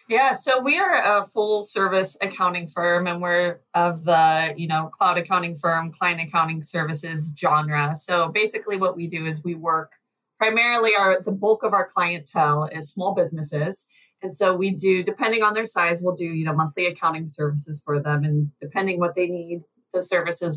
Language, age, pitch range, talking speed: English, 20-39, 150-190 Hz, 185 wpm